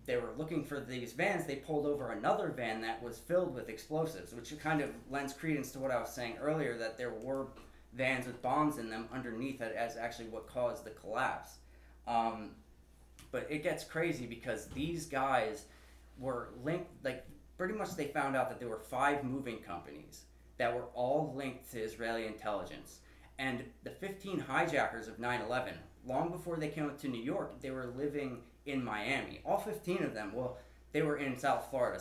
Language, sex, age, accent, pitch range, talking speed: English, male, 30-49, American, 115-150 Hz, 185 wpm